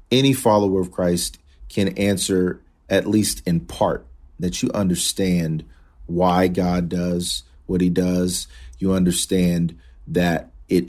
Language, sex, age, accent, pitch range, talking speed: English, male, 40-59, American, 80-105 Hz, 125 wpm